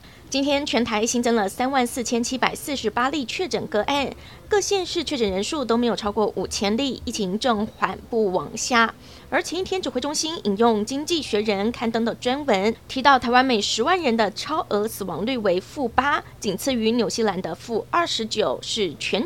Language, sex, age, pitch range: Chinese, female, 20-39, 210-265 Hz